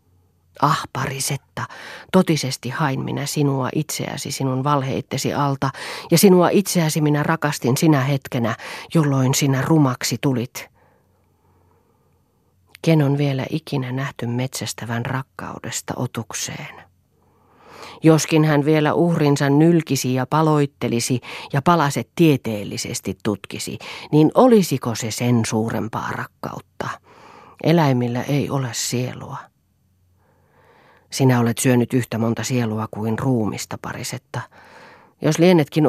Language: Finnish